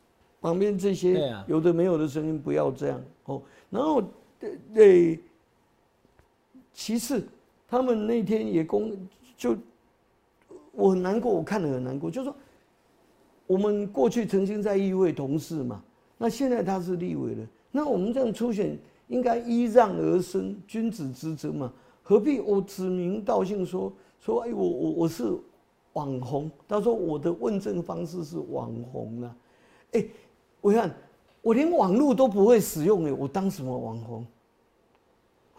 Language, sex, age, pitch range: Chinese, male, 50-69, 140-215 Hz